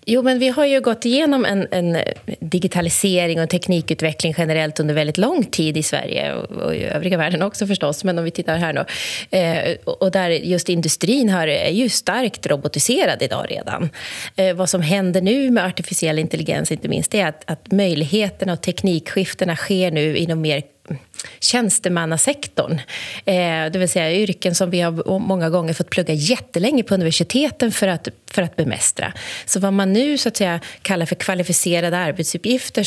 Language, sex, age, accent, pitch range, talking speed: Swedish, female, 30-49, native, 165-210 Hz, 170 wpm